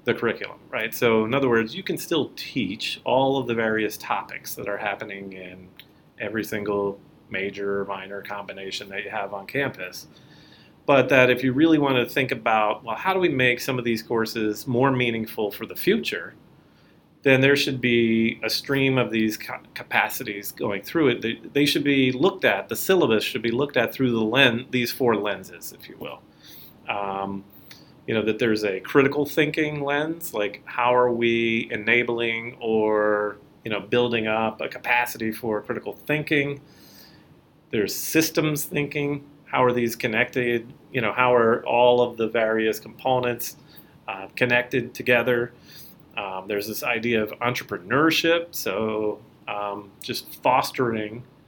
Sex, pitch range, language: male, 105-130 Hz, English